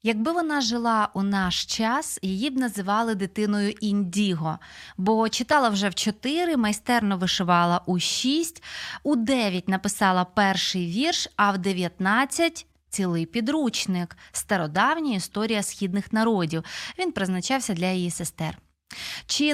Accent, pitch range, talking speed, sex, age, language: native, 190-250 Hz, 125 wpm, female, 20-39, Ukrainian